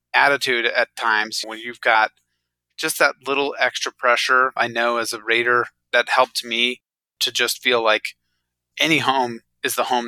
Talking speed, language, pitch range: 165 wpm, English, 115-130 Hz